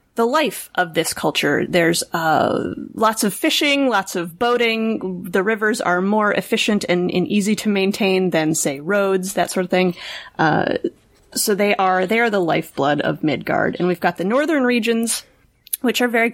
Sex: female